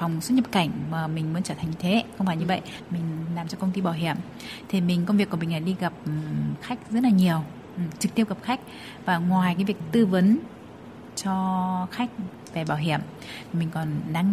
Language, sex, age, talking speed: Vietnamese, female, 20-39, 220 wpm